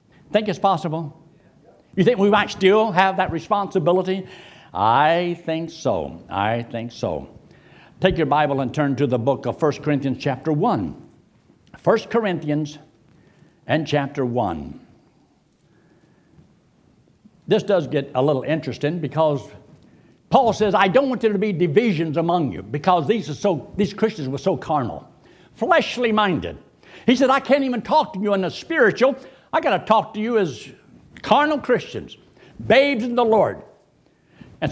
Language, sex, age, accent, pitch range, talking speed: English, male, 60-79, American, 160-250 Hz, 155 wpm